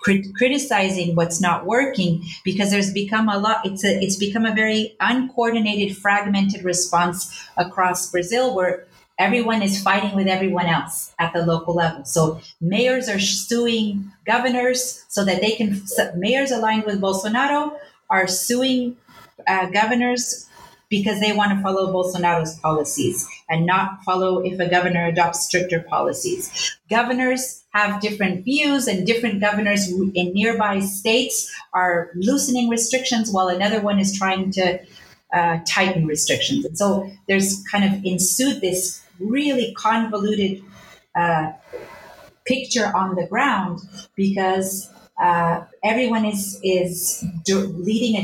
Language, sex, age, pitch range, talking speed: English, female, 30-49, 180-225 Hz, 135 wpm